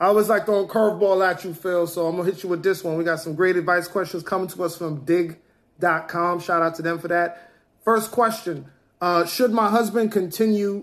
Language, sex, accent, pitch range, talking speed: English, male, American, 170-205 Hz, 225 wpm